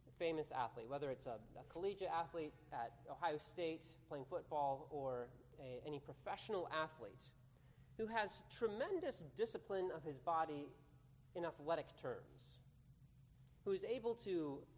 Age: 30-49